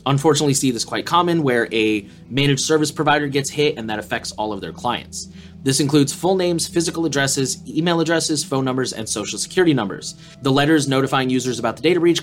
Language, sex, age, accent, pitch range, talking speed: English, male, 30-49, American, 120-165 Hz, 200 wpm